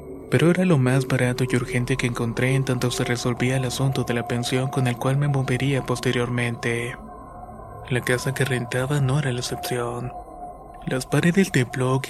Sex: male